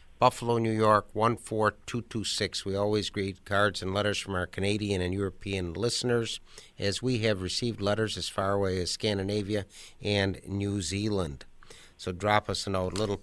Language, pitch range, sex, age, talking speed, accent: English, 100-120 Hz, male, 50-69, 155 wpm, American